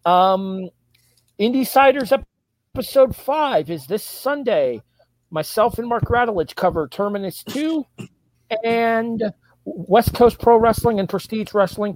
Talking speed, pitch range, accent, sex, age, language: 115 wpm, 140-220 Hz, American, male, 40-59, English